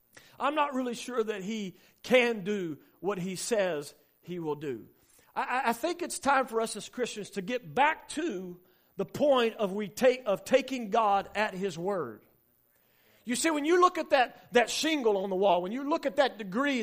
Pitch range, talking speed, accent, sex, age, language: 200-270 Hz, 195 wpm, American, male, 40-59, English